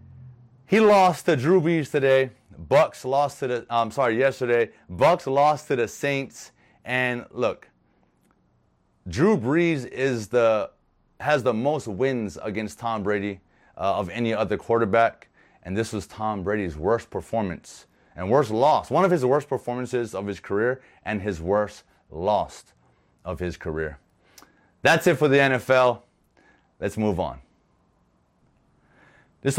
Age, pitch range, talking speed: 30-49, 105-140 Hz, 140 wpm